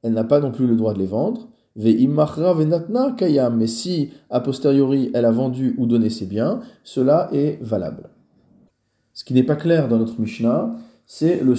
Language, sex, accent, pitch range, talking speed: French, male, French, 115-145 Hz, 175 wpm